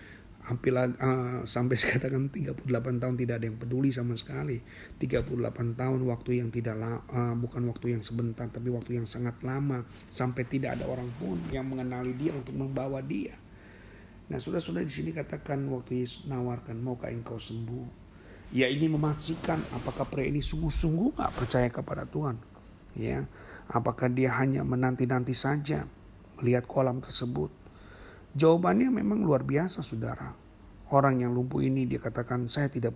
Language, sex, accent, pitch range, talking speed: Indonesian, male, native, 120-140 Hz, 155 wpm